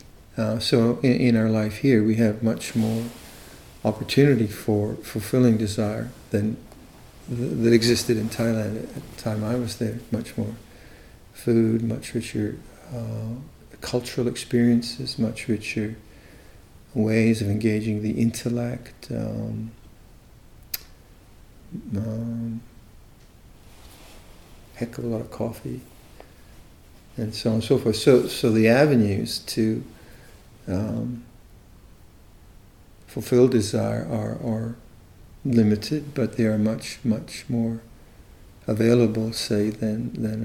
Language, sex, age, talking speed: English, male, 50-69, 115 wpm